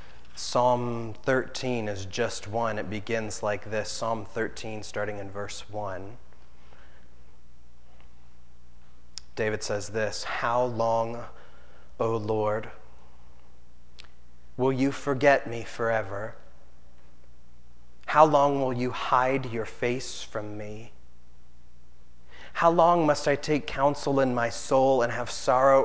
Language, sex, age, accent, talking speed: English, male, 30-49, American, 110 wpm